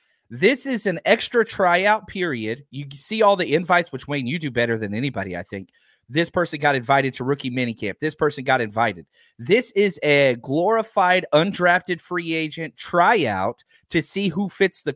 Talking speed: 175 wpm